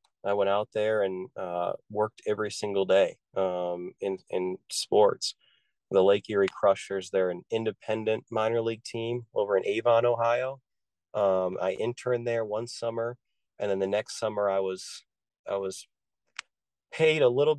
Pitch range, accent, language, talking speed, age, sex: 95-120 Hz, American, English, 155 wpm, 30-49, male